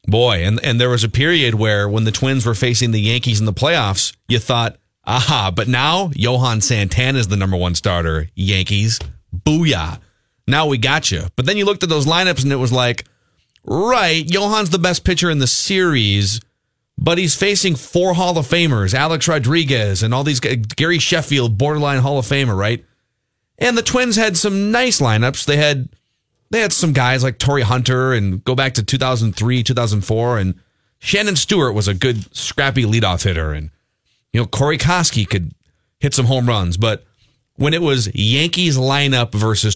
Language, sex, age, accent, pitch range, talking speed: English, male, 30-49, American, 110-155 Hz, 185 wpm